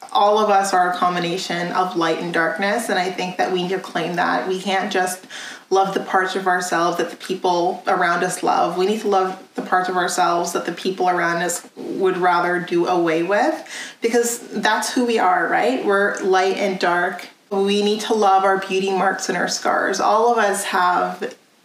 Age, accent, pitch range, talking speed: 30-49, American, 180-205 Hz, 210 wpm